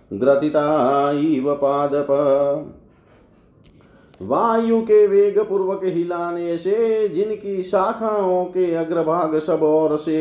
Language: Hindi